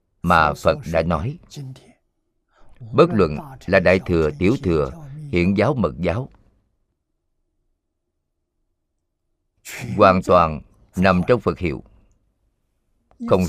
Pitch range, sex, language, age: 80-105 Hz, male, Vietnamese, 50-69